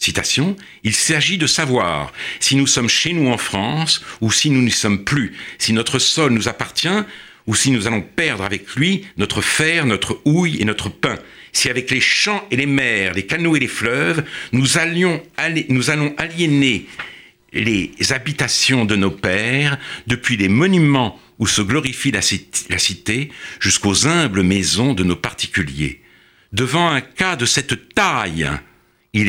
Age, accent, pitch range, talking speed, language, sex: 60-79, French, 105-150 Hz, 170 wpm, French, male